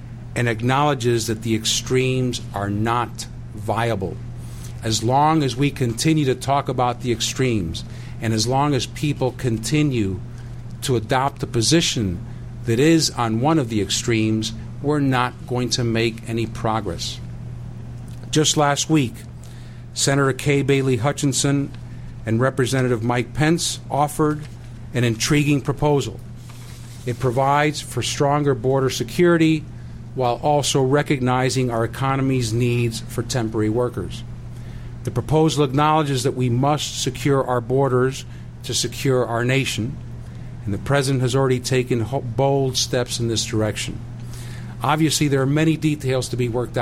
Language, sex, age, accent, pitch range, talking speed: English, male, 50-69, American, 120-135 Hz, 135 wpm